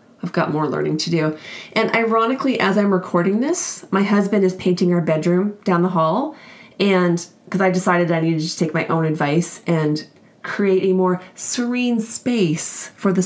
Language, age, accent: English, 30-49, American